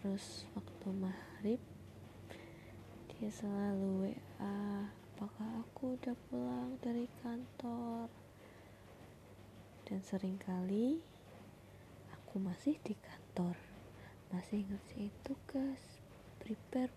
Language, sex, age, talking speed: Indonesian, female, 20-39, 80 wpm